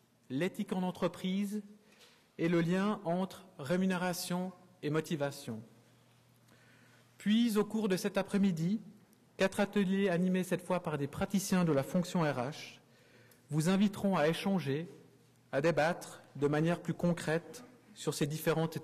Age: 40-59